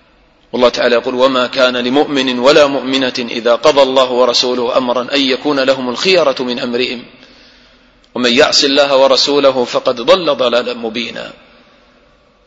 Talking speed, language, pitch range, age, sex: 130 wpm, English, 130-205 Hz, 40-59, male